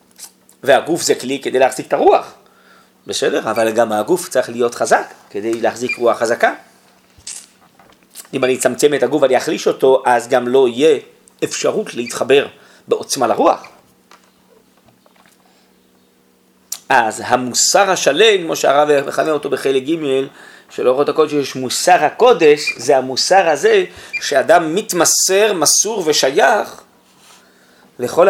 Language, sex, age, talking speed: Hebrew, male, 30-49, 120 wpm